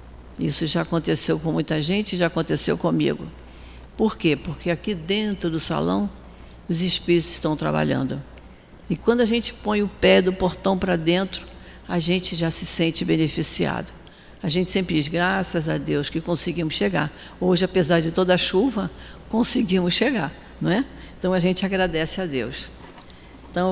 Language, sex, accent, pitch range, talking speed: Portuguese, female, Brazilian, 165-200 Hz, 160 wpm